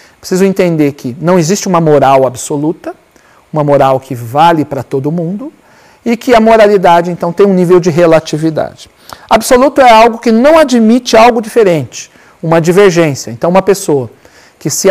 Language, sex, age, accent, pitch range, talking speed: Portuguese, male, 50-69, Brazilian, 160-220 Hz, 160 wpm